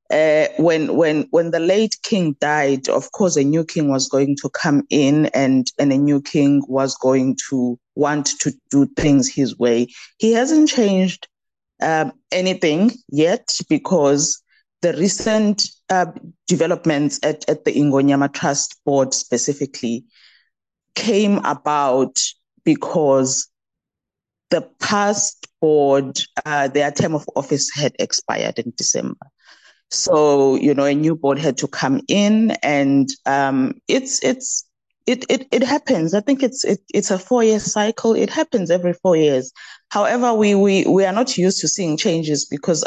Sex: female